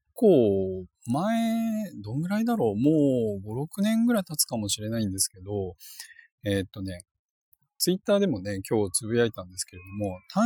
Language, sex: Japanese, male